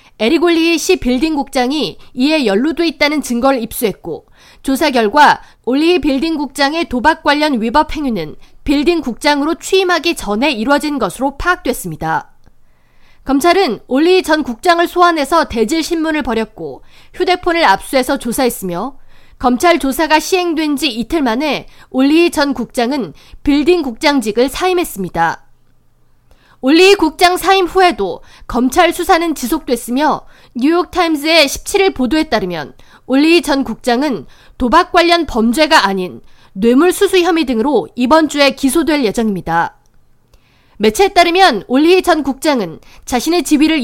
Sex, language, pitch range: female, Korean, 250-335 Hz